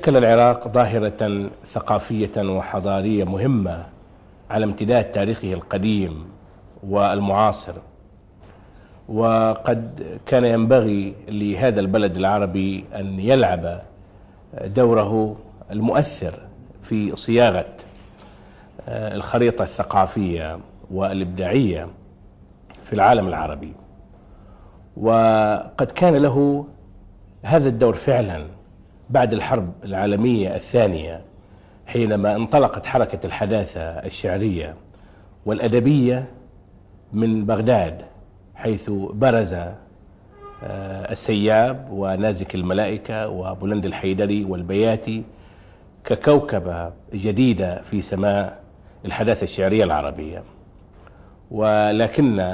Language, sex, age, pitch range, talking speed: Arabic, male, 50-69, 95-110 Hz, 70 wpm